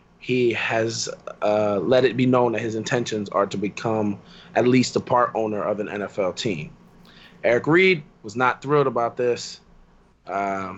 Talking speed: 165 wpm